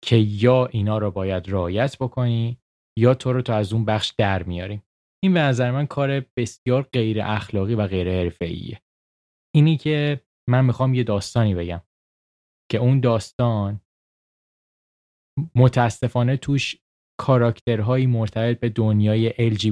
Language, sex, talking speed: Persian, male, 135 wpm